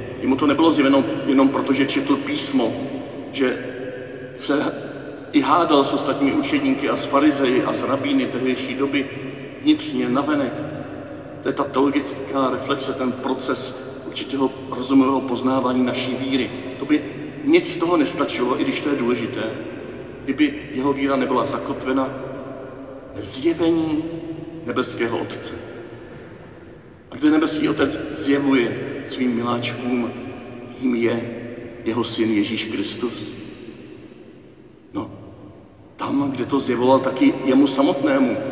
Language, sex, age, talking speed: Czech, male, 50-69, 125 wpm